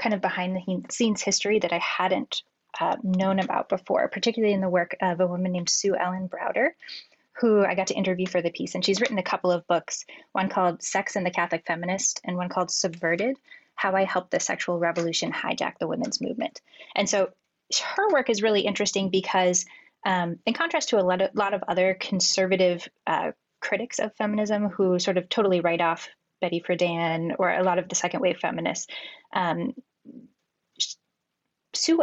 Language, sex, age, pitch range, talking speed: English, female, 10-29, 180-215 Hz, 185 wpm